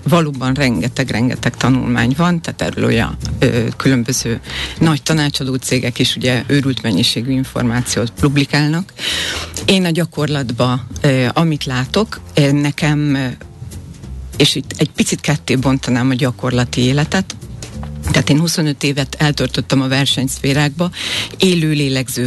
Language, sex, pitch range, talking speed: Hungarian, female, 125-150 Hz, 115 wpm